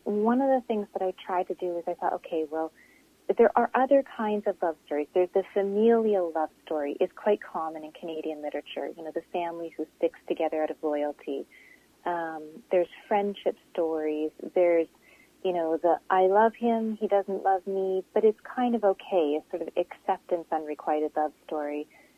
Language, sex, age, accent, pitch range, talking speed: English, female, 30-49, American, 160-210 Hz, 185 wpm